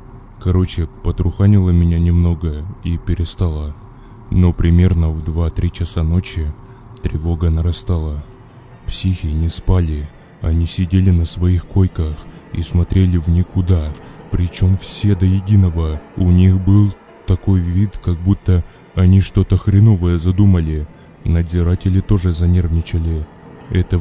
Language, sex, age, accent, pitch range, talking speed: Russian, male, 20-39, native, 85-95 Hz, 110 wpm